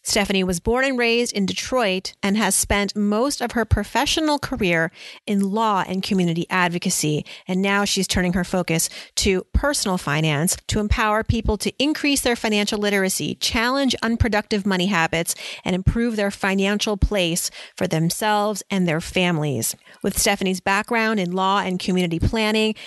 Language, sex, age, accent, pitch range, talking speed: English, female, 30-49, American, 185-235 Hz, 155 wpm